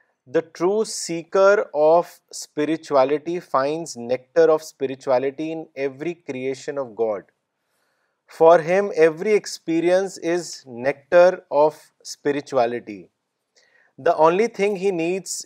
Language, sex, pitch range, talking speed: Urdu, male, 145-180 Hz, 105 wpm